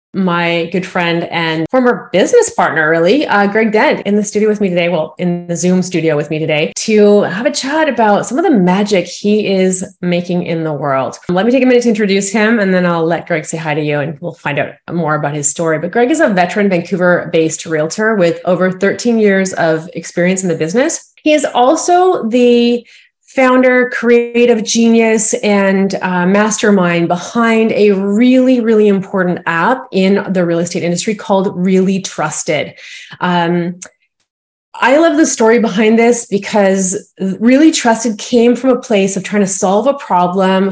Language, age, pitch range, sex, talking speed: English, 30-49, 175-230 Hz, female, 185 wpm